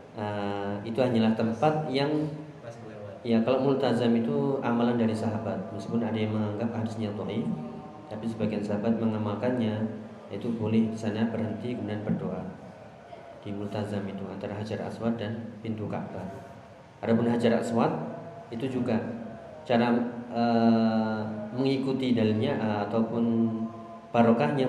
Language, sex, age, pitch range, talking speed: Indonesian, male, 30-49, 110-120 Hz, 120 wpm